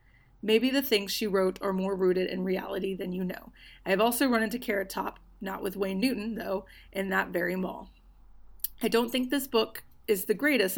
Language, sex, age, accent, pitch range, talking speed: English, female, 30-49, American, 195-245 Hz, 205 wpm